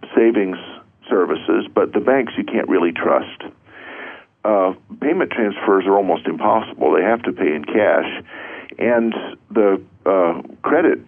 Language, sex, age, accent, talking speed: English, male, 50-69, American, 135 wpm